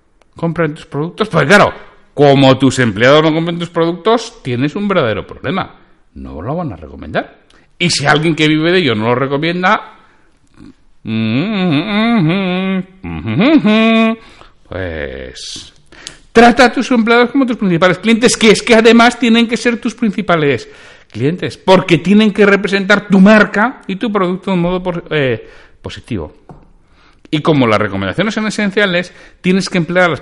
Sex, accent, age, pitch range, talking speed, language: male, Spanish, 60-79, 140-215 Hz, 150 wpm, Spanish